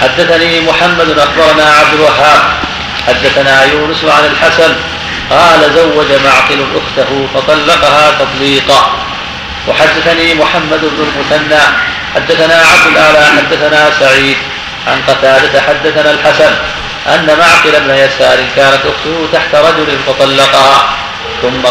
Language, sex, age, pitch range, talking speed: Arabic, male, 40-59, 135-155 Hz, 105 wpm